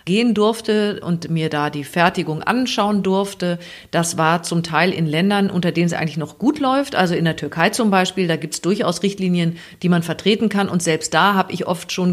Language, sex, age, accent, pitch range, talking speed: German, female, 40-59, German, 175-220 Hz, 220 wpm